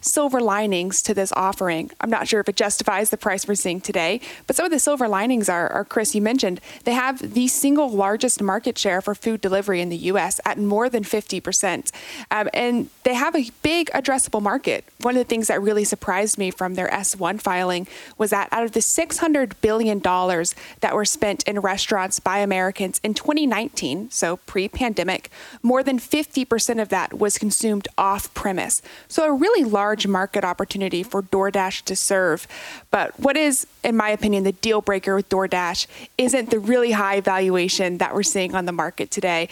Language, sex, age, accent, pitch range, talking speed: English, female, 30-49, American, 190-245 Hz, 185 wpm